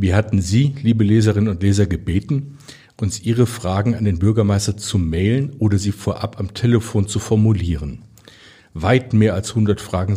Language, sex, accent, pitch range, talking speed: German, male, German, 95-115 Hz, 165 wpm